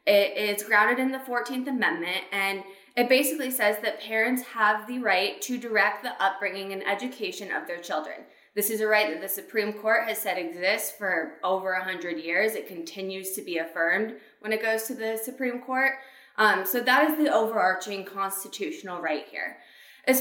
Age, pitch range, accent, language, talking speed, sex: 20-39, 195-260 Hz, American, English, 180 wpm, female